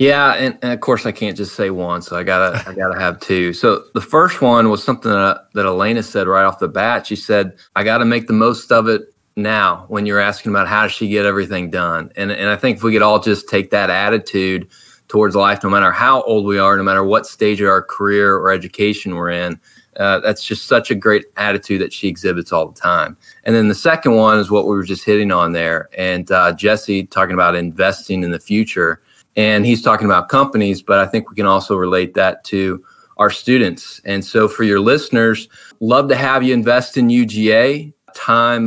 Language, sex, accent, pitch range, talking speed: English, male, American, 95-115 Hz, 230 wpm